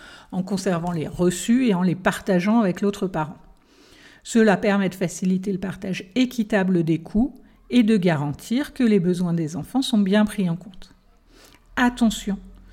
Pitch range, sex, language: 185-225 Hz, female, French